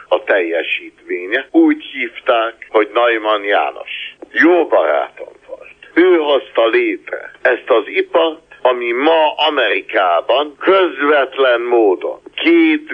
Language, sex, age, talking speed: Hungarian, male, 60-79, 100 wpm